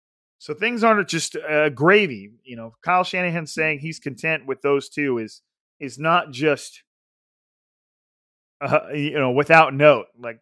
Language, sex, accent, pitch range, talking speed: English, male, American, 130-160 Hz, 150 wpm